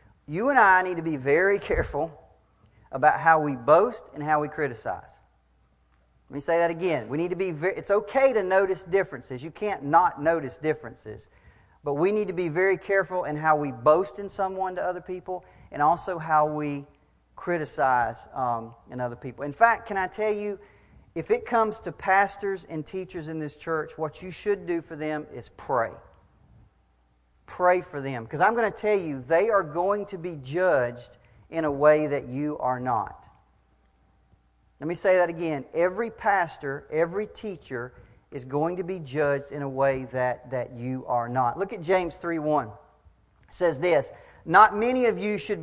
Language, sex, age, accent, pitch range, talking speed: English, male, 40-59, American, 135-190 Hz, 185 wpm